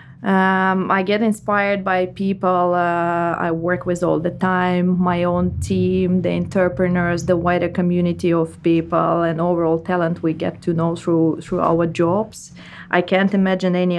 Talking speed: 165 wpm